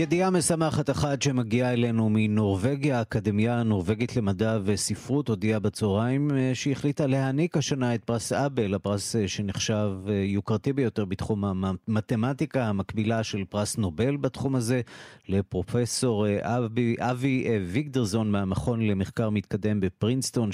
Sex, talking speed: male, 115 wpm